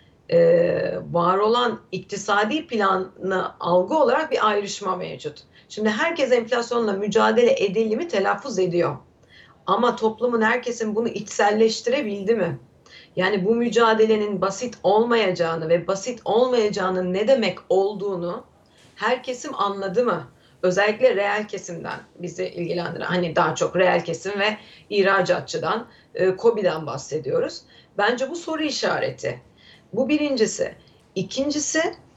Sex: female